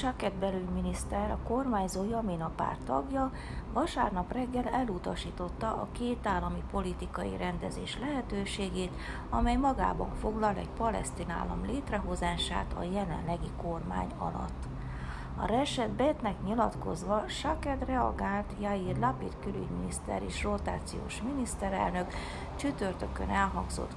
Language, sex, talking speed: Hungarian, female, 105 wpm